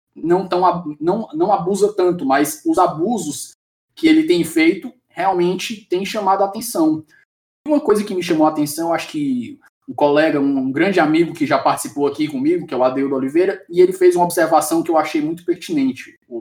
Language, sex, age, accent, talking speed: Portuguese, male, 20-39, Brazilian, 200 wpm